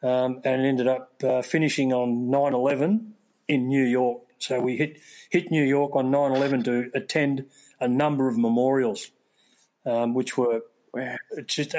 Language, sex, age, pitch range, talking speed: English, male, 40-59, 120-135 Hz, 150 wpm